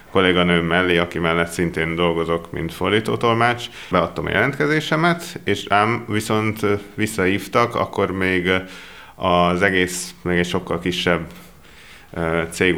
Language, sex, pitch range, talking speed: Hungarian, male, 90-110 Hz, 115 wpm